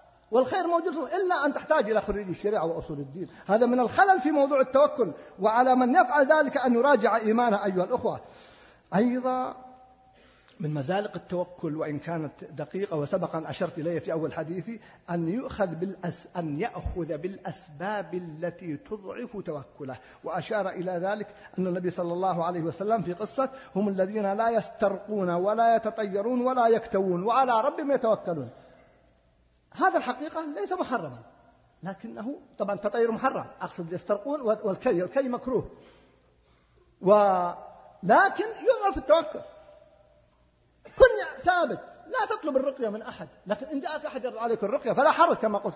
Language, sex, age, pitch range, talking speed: Arabic, male, 50-69, 185-290 Hz, 130 wpm